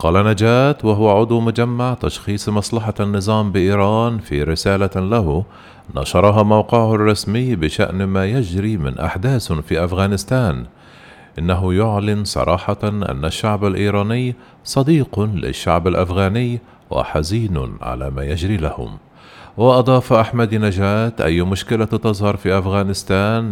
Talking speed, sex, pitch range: 110 wpm, male, 90-110 Hz